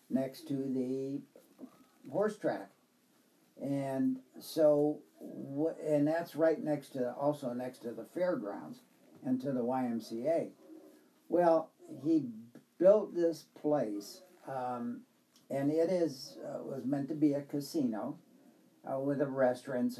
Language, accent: English, American